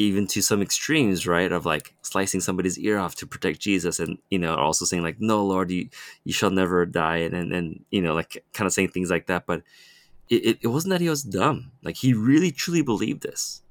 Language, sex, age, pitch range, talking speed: English, male, 20-39, 90-105 Hz, 235 wpm